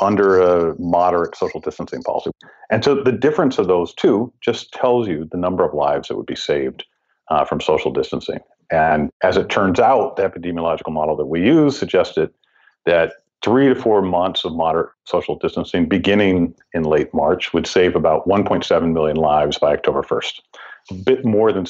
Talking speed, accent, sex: 185 wpm, American, male